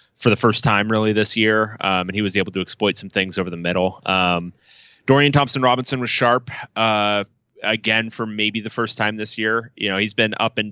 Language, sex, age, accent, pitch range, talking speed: English, male, 20-39, American, 100-120 Hz, 225 wpm